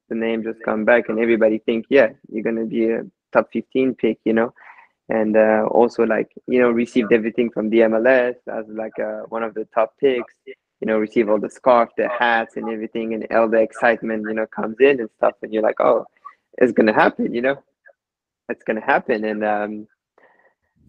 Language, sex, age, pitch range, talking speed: English, male, 20-39, 110-125 Hz, 205 wpm